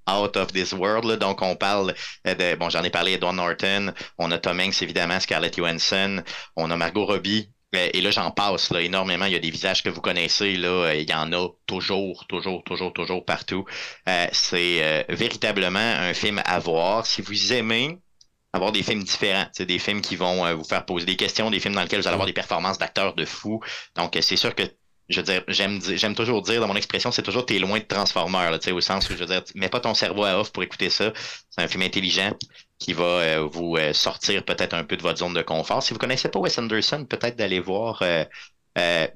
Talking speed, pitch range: 240 wpm, 85-95 Hz